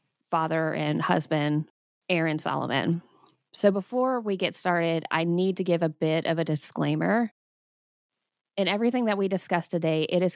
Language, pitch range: English, 165-195 Hz